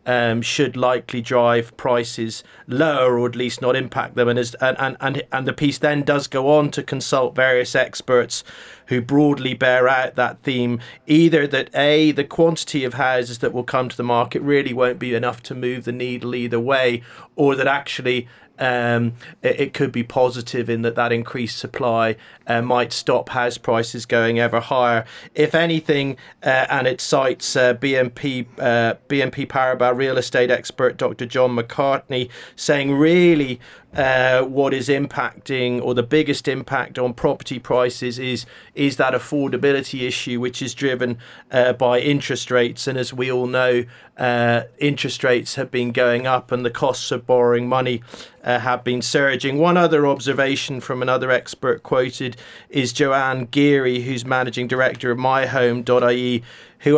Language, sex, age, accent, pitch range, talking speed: English, male, 40-59, British, 120-140 Hz, 165 wpm